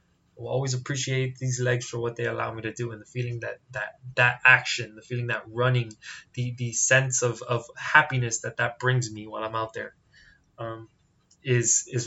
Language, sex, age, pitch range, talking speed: English, male, 20-39, 120-135 Hz, 200 wpm